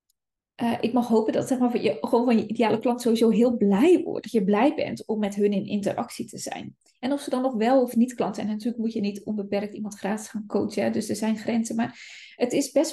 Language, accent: Dutch, Dutch